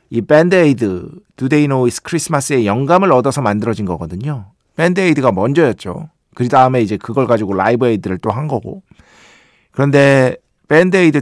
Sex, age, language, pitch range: male, 50-69, Korean, 115-175 Hz